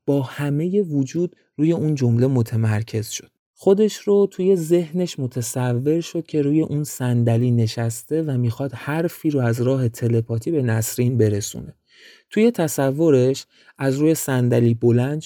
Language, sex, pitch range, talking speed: Persian, male, 120-160 Hz, 140 wpm